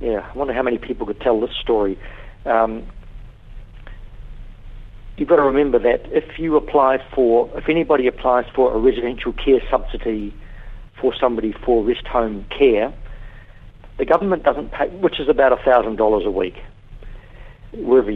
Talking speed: 150 wpm